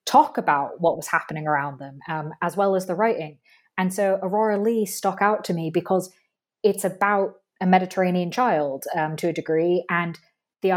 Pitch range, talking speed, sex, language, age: 170-205 Hz, 185 wpm, female, English, 20-39